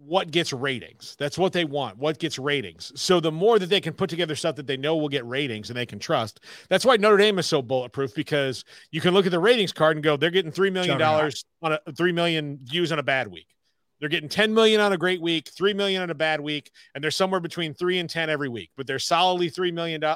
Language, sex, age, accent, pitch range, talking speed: English, male, 40-59, American, 140-180 Hz, 260 wpm